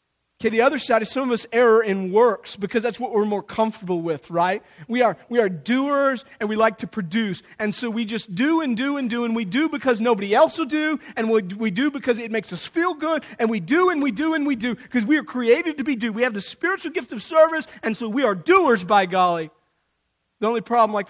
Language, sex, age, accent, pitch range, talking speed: English, male, 40-59, American, 190-240 Hz, 260 wpm